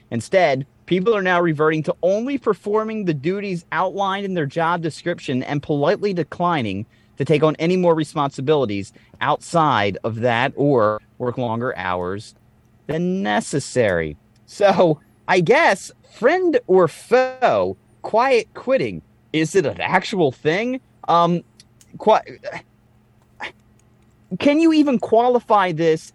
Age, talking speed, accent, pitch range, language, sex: 30-49, 120 wpm, American, 115-175 Hz, English, male